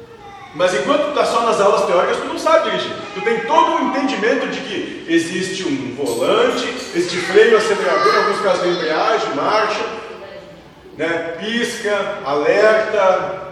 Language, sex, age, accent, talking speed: Portuguese, male, 40-59, Brazilian, 145 wpm